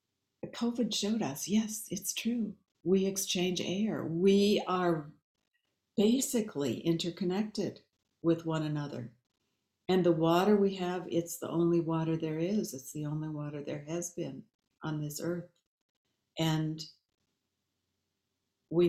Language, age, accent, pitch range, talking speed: English, 60-79, American, 150-180 Hz, 125 wpm